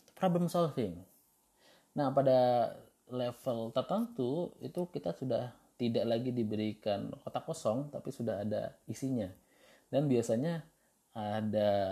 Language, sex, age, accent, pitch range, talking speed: Indonesian, male, 20-39, native, 105-125 Hz, 105 wpm